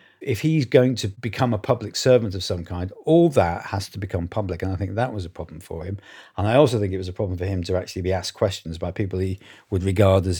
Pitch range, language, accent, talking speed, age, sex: 90-110 Hz, English, British, 270 wpm, 40-59, male